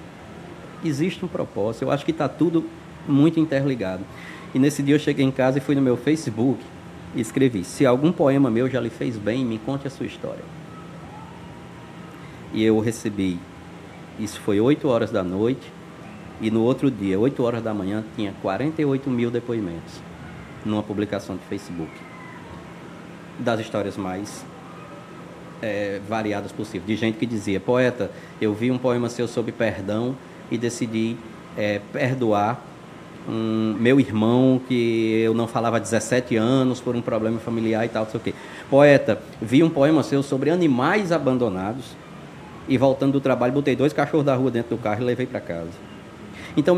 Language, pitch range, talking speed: Portuguese, 110-140 Hz, 160 wpm